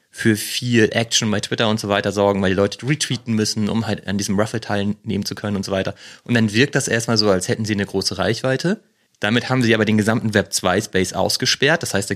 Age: 30-49